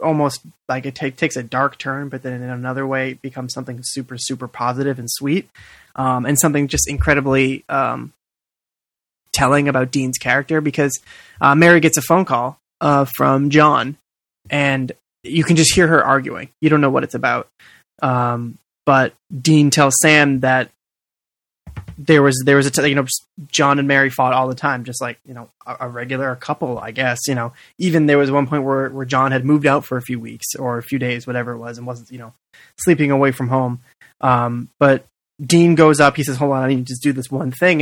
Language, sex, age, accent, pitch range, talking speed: English, male, 20-39, American, 125-145 Hz, 215 wpm